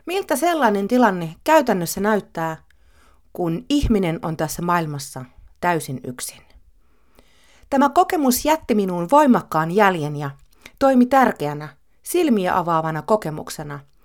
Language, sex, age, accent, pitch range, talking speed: Finnish, female, 30-49, native, 155-245 Hz, 105 wpm